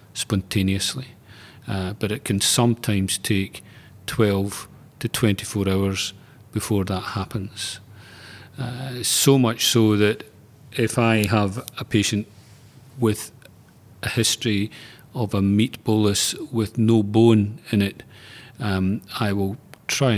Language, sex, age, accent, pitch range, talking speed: English, male, 40-59, British, 95-115 Hz, 120 wpm